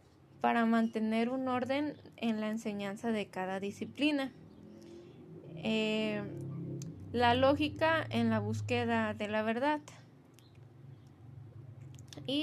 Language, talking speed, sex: Spanish, 95 wpm, female